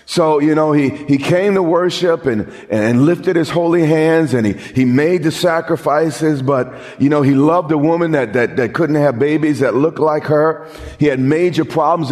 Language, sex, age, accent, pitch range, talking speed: English, male, 40-59, American, 125-165 Hz, 205 wpm